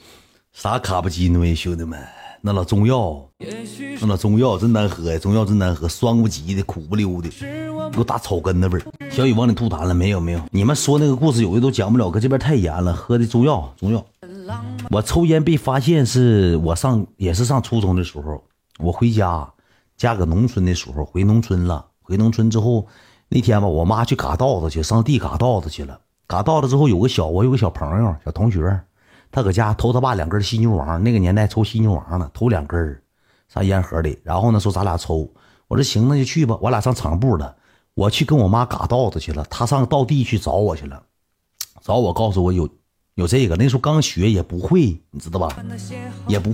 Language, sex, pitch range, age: Chinese, male, 90-125 Hz, 40-59